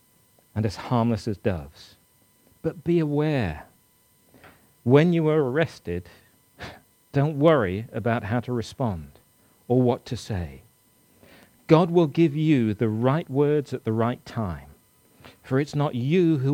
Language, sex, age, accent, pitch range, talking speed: English, male, 40-59, British, 110-150 Hz, 140 wpm